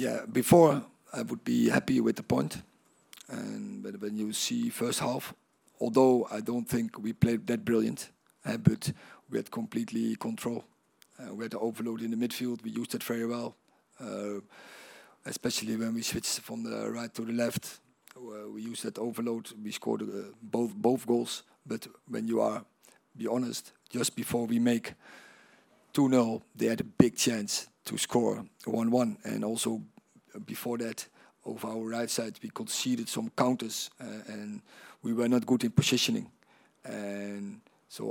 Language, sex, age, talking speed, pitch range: English, male, 40-59, 165 wpm, 110-125 Hz